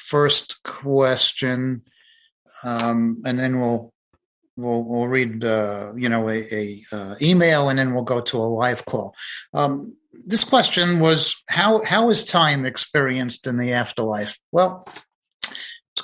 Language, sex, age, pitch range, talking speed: English, male, 50-69, 120-145 Hz, 145 wpm